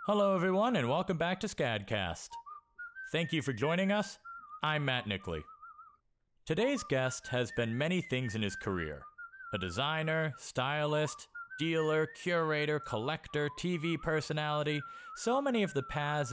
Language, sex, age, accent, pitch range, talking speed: English, male, 40-59, American, 125-210 Hz, 135 wpm